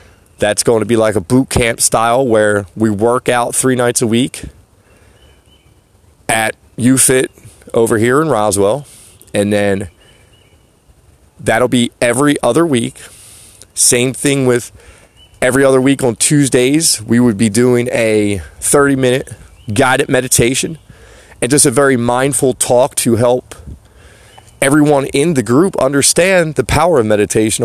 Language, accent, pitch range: English, American, 100-130 Hz